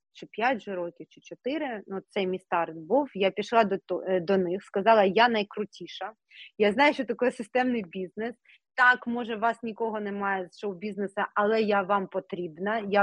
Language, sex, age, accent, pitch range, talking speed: Ukrainian, female, 30-49, native, 195-235 Hz, 165 wpm